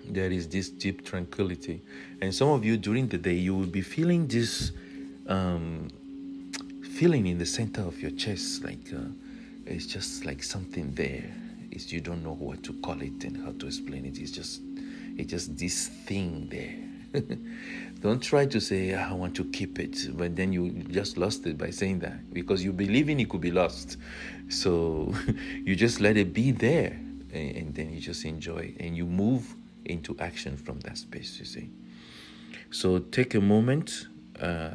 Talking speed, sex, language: 185 wpm, male, English